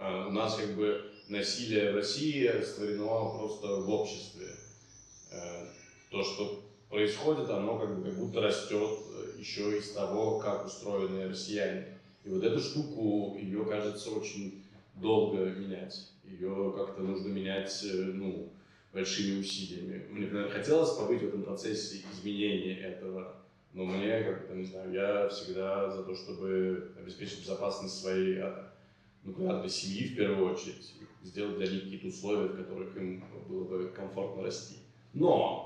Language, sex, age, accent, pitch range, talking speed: Russian, male, 20-39, native, 95-115 Hz, 140 wpm